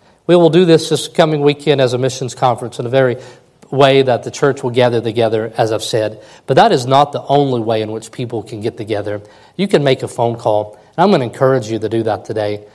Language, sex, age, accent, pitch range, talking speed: English, male, 40-59, American, 120-155 Hz, 250 wpm